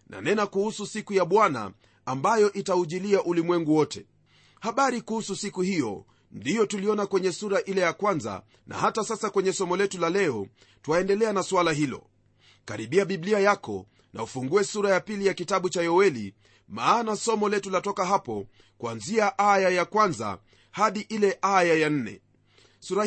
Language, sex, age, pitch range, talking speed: Swahili, male, 40-59, 145-205 Hz, 155 wpm